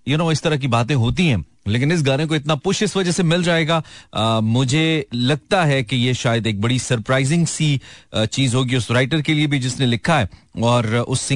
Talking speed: 145 wpm